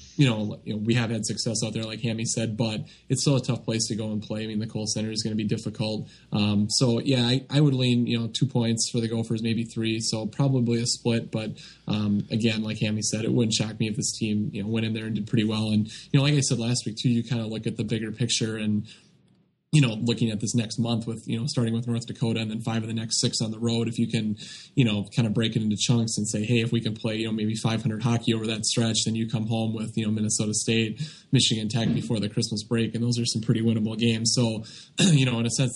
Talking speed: 285 wpm